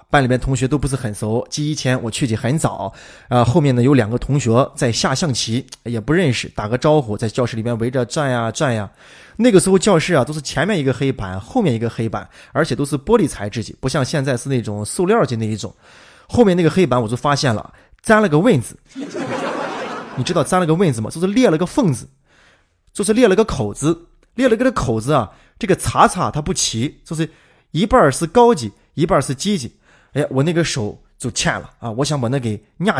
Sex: male